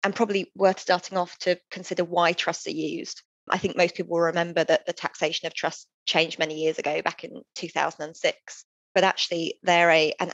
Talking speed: 195 wpm